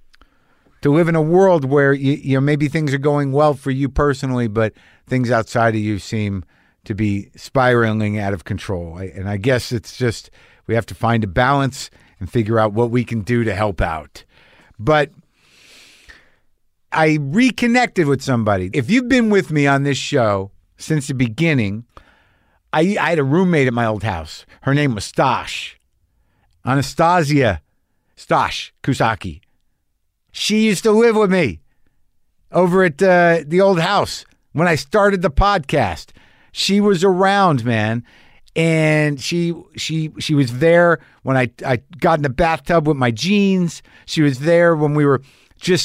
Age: 50-69